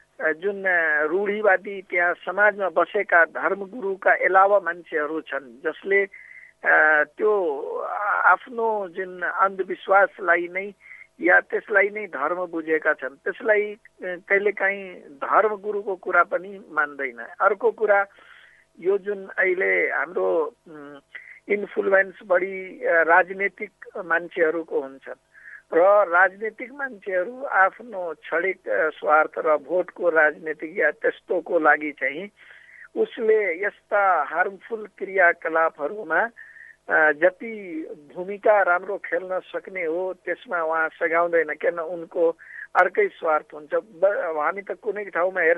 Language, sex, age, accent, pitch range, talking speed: English, male, 60-79, Indian, 170-215 Hz, 95 wpm